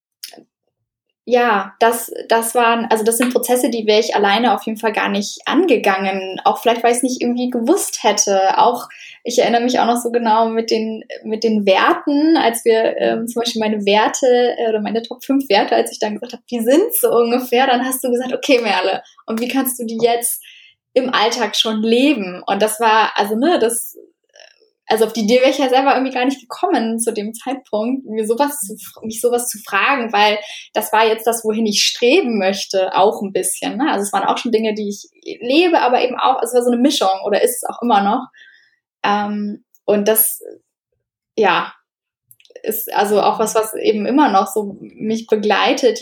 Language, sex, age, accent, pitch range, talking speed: German, female, 10-29, German, 215-260 Hz, 205 wpm